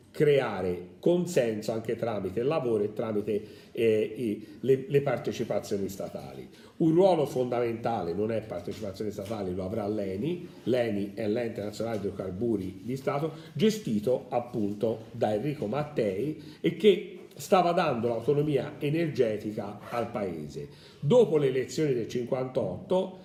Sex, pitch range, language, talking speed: male, 110-155 Hz, Italian, 125 wpm